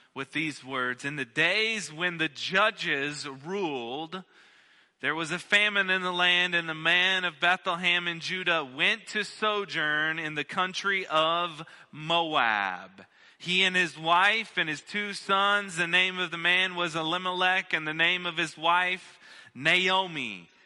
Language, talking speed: English, 155 wpm